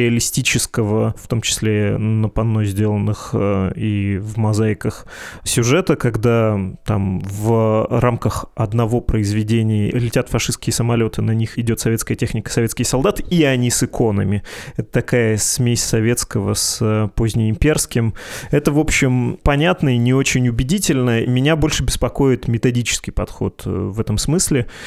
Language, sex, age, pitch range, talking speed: Russian, male, 20-39, 105-125 Hz, 130 wpm